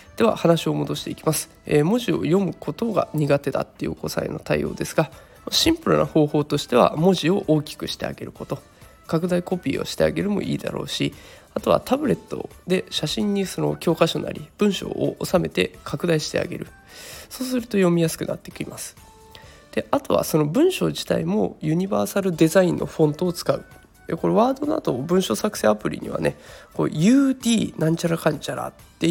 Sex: male